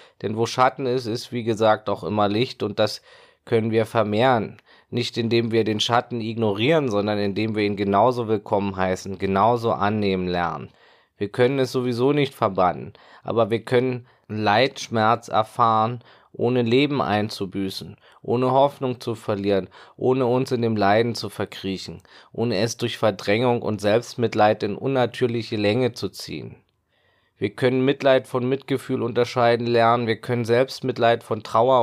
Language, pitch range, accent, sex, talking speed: German, 100-120 Hz, German, male, 150 wpm